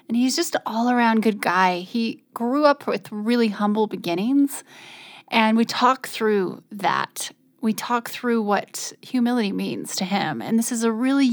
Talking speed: 170 wpm